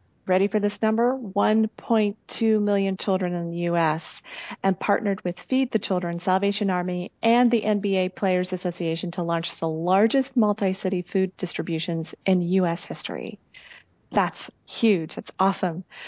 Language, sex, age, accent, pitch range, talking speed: English, female, 40-59, American, 180-210 Hz, 140 wpm